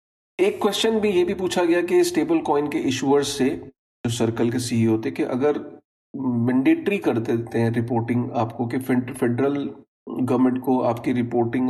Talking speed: 160 wpm